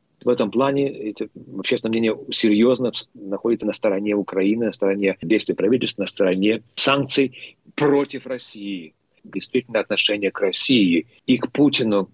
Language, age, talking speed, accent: Russian, 40-59, 135 wpm, native